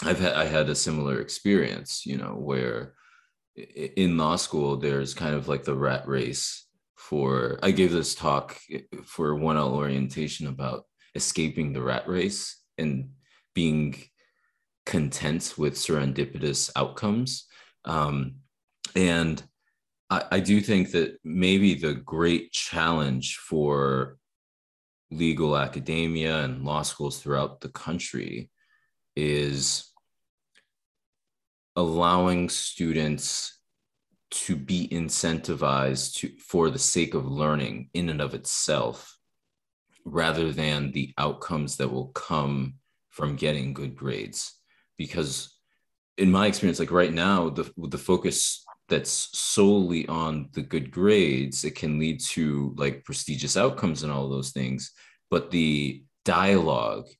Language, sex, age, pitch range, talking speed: English, male, 20-39, 70-80 Hz, 125 wpm